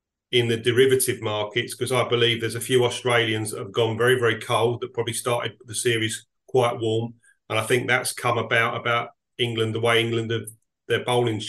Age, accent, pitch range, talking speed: 40-59, British, 115-130 Hz, 200 wpm